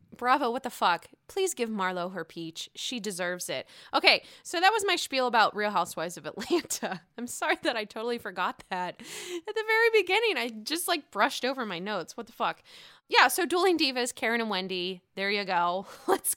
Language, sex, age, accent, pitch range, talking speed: English, female, 20-39, American, 200-280 Hz, 200 wpm